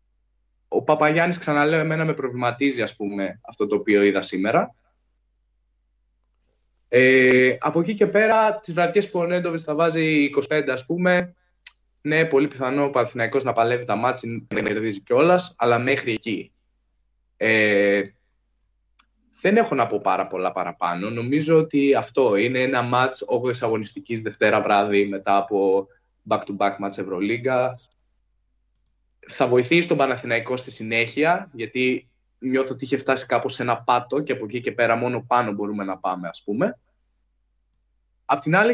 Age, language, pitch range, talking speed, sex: 20-39, Greek, 100-145 Hz, 150 wpm, male